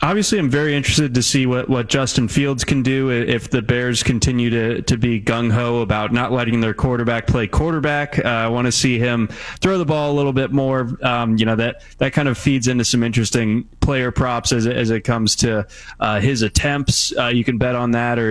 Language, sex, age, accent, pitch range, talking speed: English, male, 20-39, American, 115-135 Hz, 225 wpm